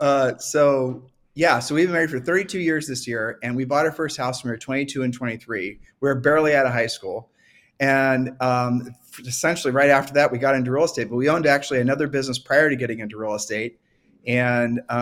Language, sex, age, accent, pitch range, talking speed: English, male, 30-49, American, 120-145 Hz, 210 wpm